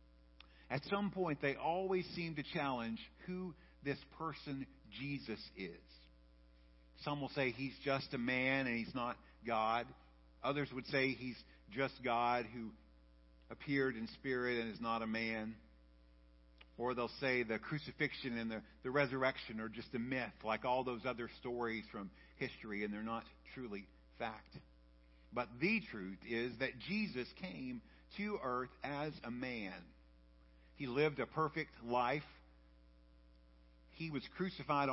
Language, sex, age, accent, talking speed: English, male, 50-69, American, 145 wpm